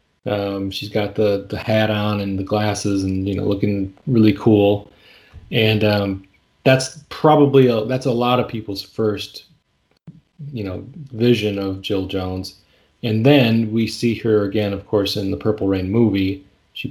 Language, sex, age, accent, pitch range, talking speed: English, male, 30-49, American, 100-120 Hz, 165 wpm